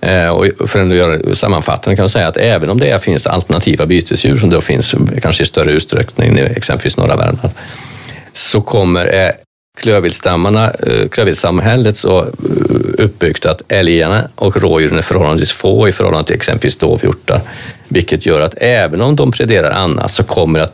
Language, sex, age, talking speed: Swedish, male, 40-59, 160 wpm